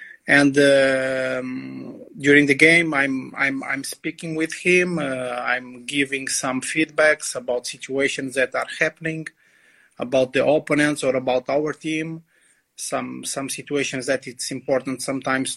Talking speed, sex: 135 wpm, male